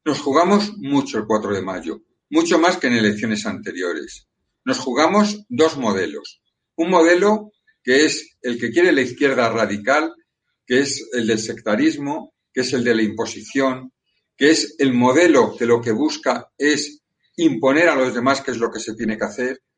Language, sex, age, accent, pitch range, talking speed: Spanish, male, 50-69, Spanish, 110-160 Hz, 180 wpm